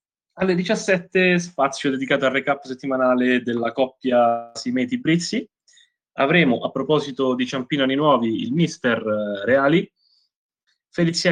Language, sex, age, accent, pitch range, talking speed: Italian, male, 20-39, native, 115-155 Hz, 110 wpm